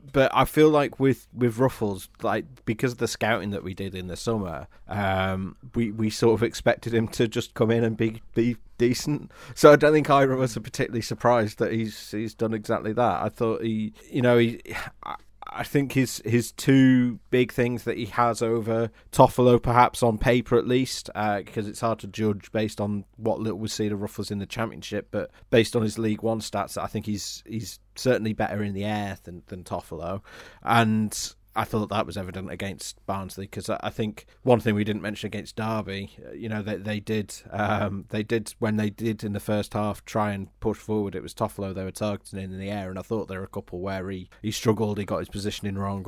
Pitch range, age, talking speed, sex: 100-115 Hz, 30-49, 220 wpm, male